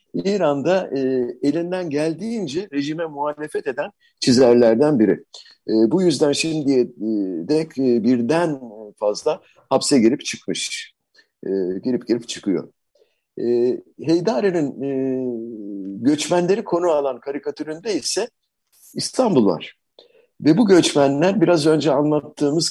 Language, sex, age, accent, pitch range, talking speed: Turkish, male, 50-69, native, 120-170 Hz, 105 wpm